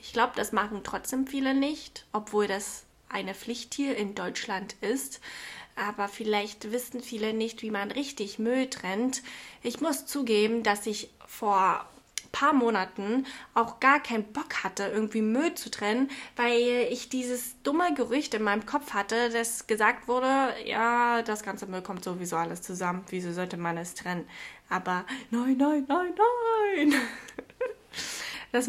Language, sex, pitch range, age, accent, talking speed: German, female, 210-255 Hz, 20-39, German, 155 wpm